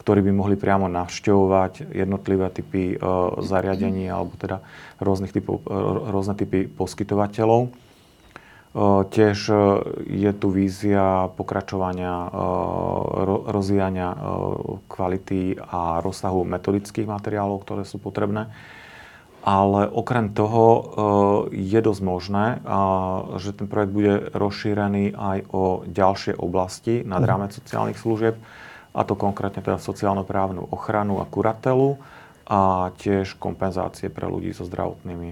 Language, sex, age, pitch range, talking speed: Slovak, male, 40-59, 95-105 Hz, 105 wpm